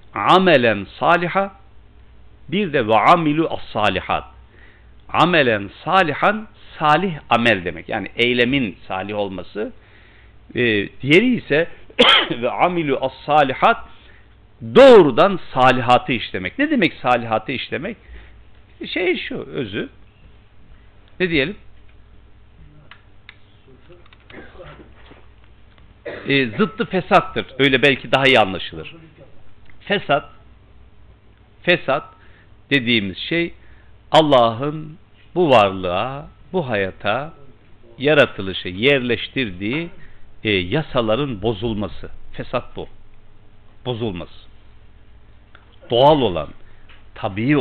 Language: Turkish